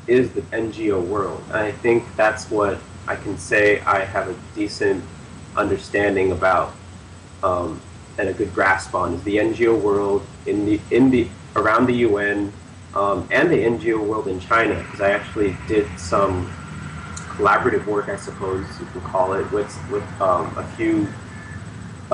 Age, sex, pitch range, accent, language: 30-49, male, 95-110 Hz, American, Korean